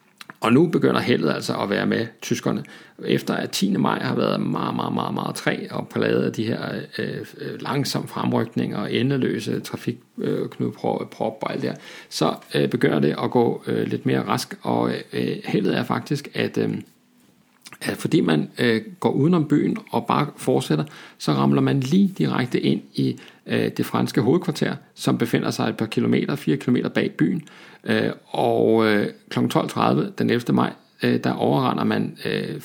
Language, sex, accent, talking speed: Danish, male, native, 175 wpm